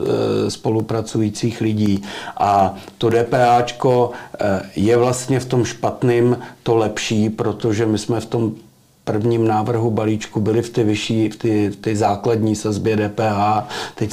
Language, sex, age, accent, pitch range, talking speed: Czech, male, 40-59, native, 105-120 Hz, 135 wpm